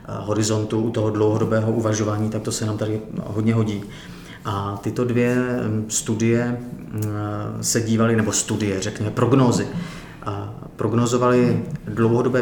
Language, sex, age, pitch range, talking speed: Czech, male, 30-49, 110-125 Hz, 110 wpm